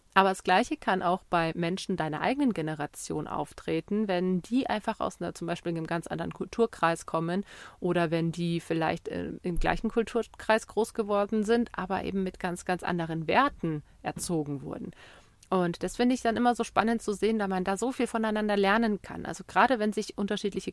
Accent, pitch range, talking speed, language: German, 175-225 Hz, 180 wpm, German